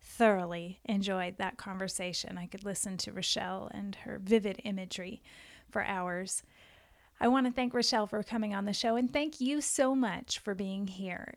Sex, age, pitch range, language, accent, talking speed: female, 30-49, 200-255 Hz, English, American, 175 wpm